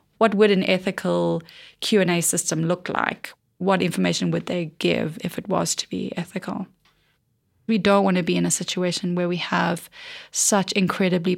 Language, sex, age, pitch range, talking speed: English, female, 20-39, 175-205 Hz, 165 wpm